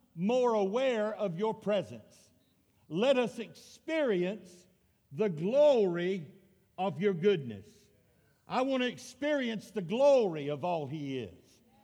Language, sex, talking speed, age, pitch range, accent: English, male, 115 wpm, 60-79, 205-275 Hz, American